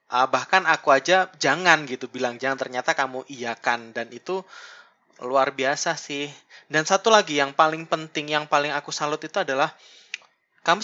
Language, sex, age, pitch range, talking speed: Indonesian, male, 20-39, 125-165 Hz, 160 wpm